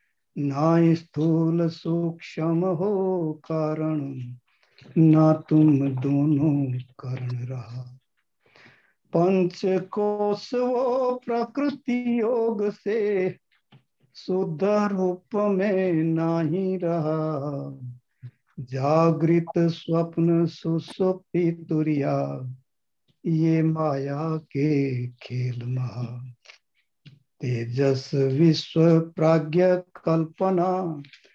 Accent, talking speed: native, 55 wpm